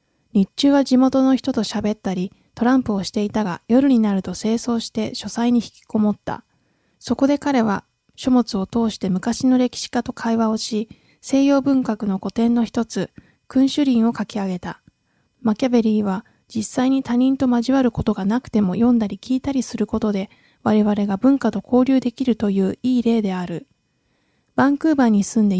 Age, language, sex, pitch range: 20-39, Japanese, female, 205-255 Hz